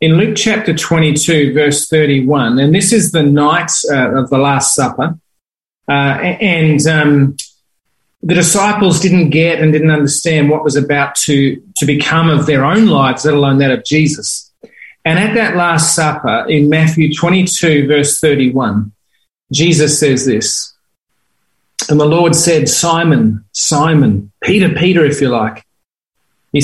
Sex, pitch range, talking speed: male, 140-170 Hz, 150 wpm